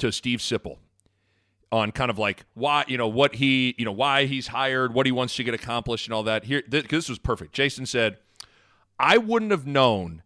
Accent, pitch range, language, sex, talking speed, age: American, 115-145 Hz, English, male, 210 wpm, 30-49